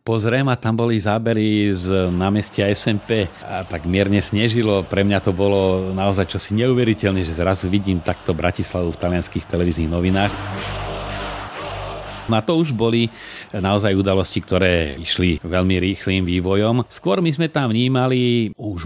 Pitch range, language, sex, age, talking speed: 90-110 Hz, Slovak, male, 40-59, 145 wpm